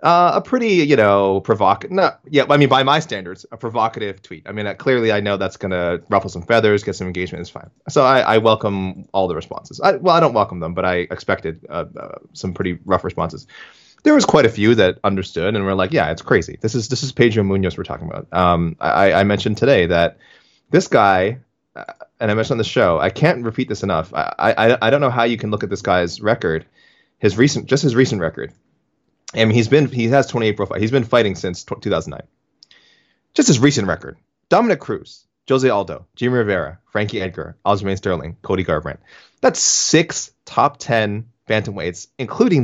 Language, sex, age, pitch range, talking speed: English, male, 20-39, 95-130 Hz, 215 wpm